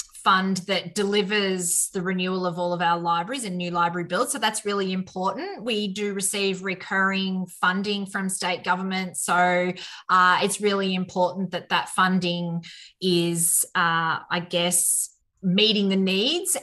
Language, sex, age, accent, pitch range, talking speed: English, female, 20-39, Australian, 175-200 Hz, 150 wpm